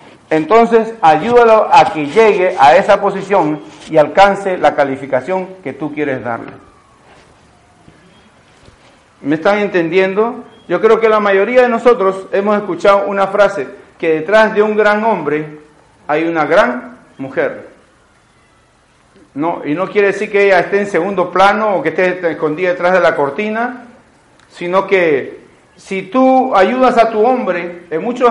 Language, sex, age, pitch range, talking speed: Spanish, male, 50-69, 165-230 Hz, 145 wpm